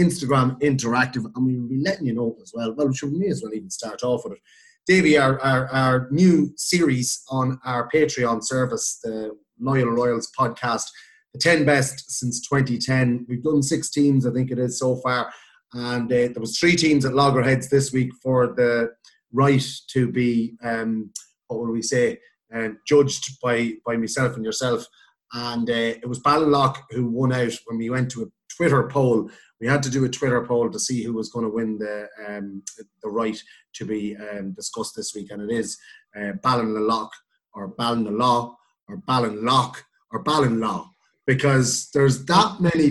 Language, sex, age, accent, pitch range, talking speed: English, male, 30-49, Irish, 115-145 Hz, 185 wpm